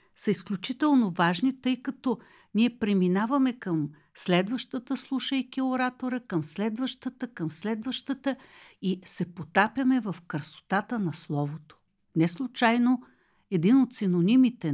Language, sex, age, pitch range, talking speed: Bulgarian, female, 60-79, 165-245 Hz, 105 wpm